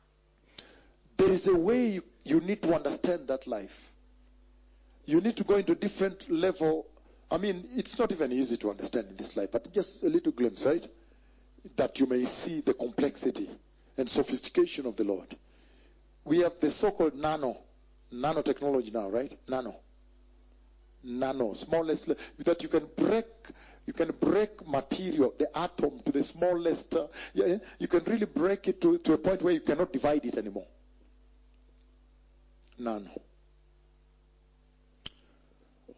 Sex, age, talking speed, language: male, 50-69, 145 wpm, English